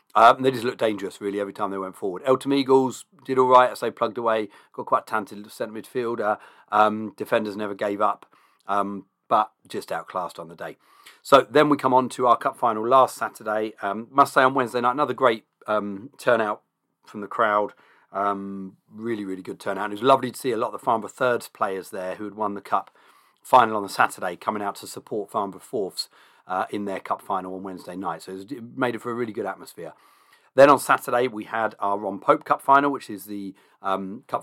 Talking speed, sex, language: 220 wpm, male, English